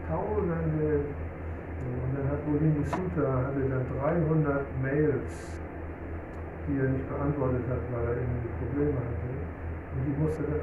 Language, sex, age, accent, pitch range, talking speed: German, male, 60-79, German, 80-130 Hz, 130 wpm